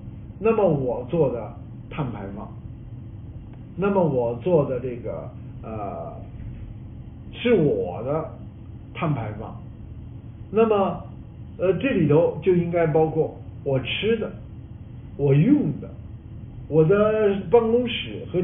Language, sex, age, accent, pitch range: Chinese, male, 50-69, native, 115-190 Hz